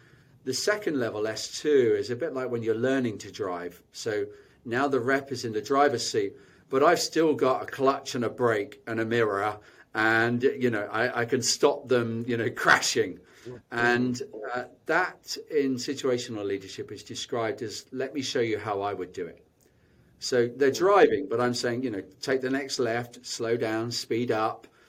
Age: 40-59